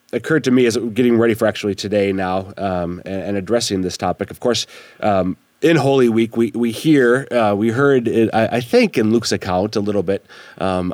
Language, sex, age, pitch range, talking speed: English, male, 30-49, 95-115 Hz, 215 wpm